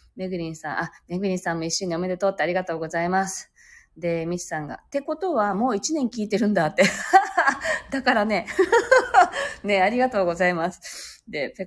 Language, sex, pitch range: Japanese, female, 180-275 Hz